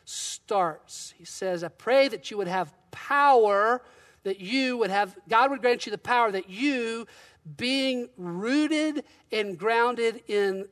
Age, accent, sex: 40-59, American, male